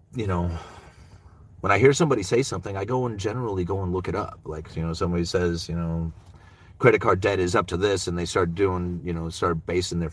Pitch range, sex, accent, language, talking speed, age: 85-100 Hz, male, American, English, 235 wpm, 30-49